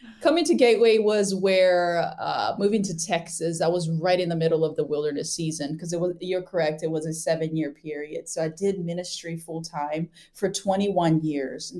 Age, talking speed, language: 20-39, 195 wpm, English